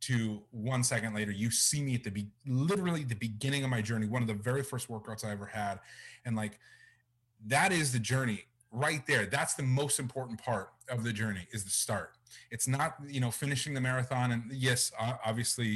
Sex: male